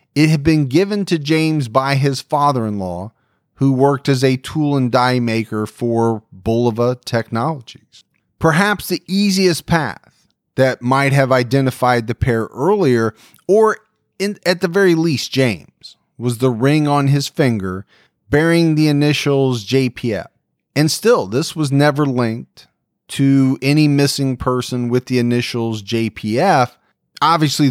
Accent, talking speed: American, 135 wpm